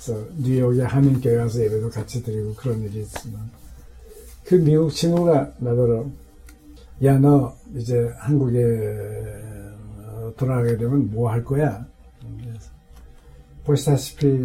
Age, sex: 60-79, male